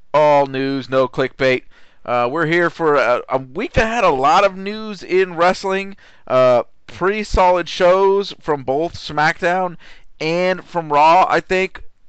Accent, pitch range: American, 115-155 Hz